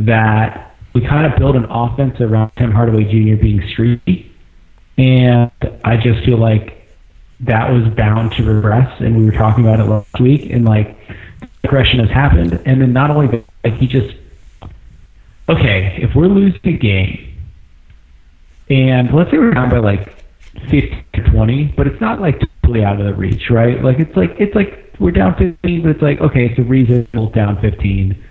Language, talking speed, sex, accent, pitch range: English, 180 wpm, male, American, 100-125 Hz